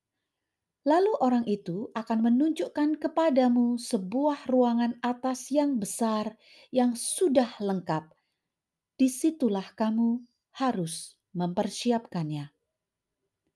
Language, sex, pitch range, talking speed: Indonesian, female, 205-270 Hz, 80 wpm